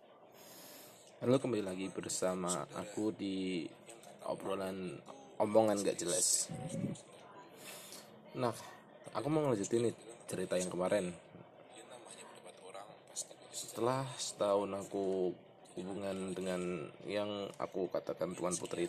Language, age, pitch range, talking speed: Indonesian, 20-39, 90-105 Hz, 90 wpm